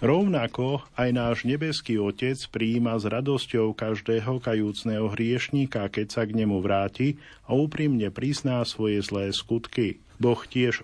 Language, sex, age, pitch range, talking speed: Slovak, male, 40-59, 110-130 Hz, 135 wpm